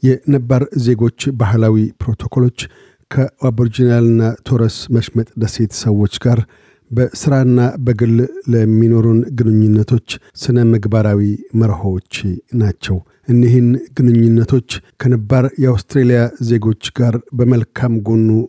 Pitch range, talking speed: 115-130 Hz, 85 wpm